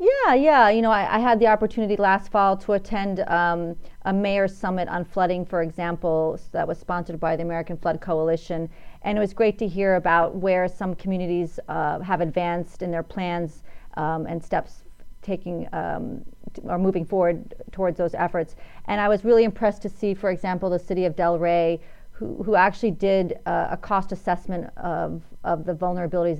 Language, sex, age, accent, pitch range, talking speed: English, female, 40-59, American, 170-190 Hz, 190 wpm